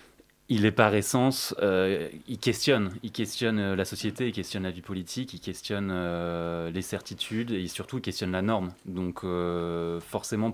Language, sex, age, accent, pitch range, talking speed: French, male, 20-39, French, 90-110 Hz, 170 wpm